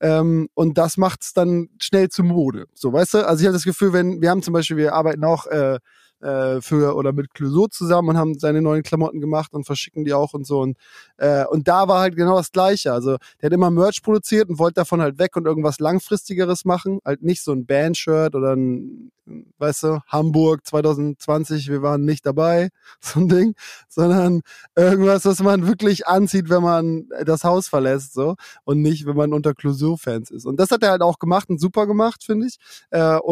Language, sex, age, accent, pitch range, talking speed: German, male, 20-39, German, 150-190 Hz, 215 wpm